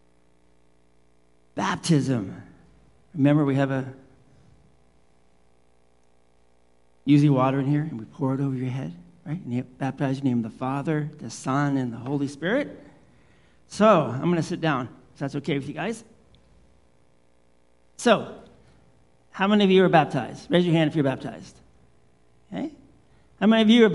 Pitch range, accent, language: 115-175 Hz, American, English